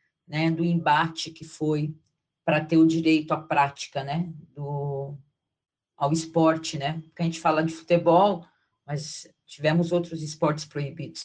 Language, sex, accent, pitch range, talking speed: Portuguese, female, Brazilian, 160-175 Hz, 140 wpm